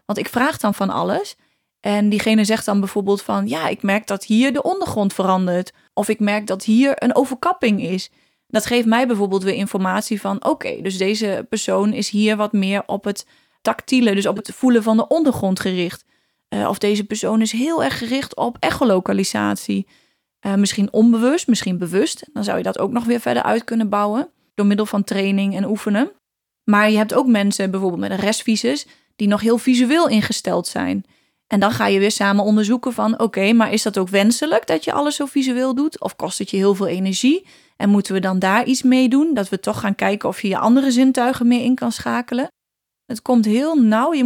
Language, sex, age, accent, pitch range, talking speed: Dutch, female, 30-49, Dutch, 200-245 Hz, 210 wpm